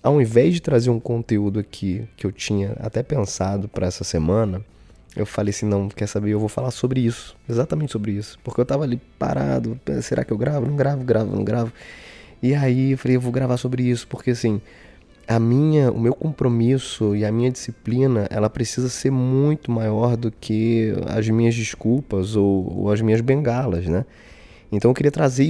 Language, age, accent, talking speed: Portuguese, 20-39, Brazilian, 195 wpm